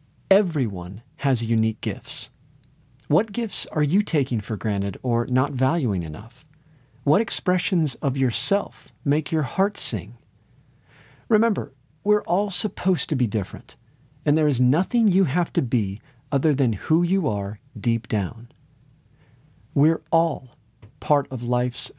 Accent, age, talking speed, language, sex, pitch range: American, 40-59, 135 wpm, English, male, 120-155 Hz